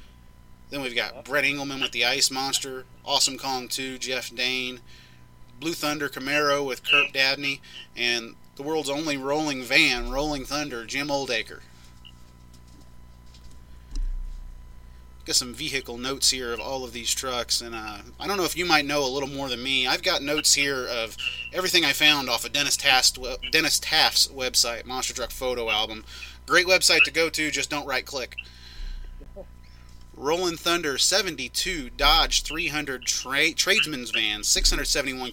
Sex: male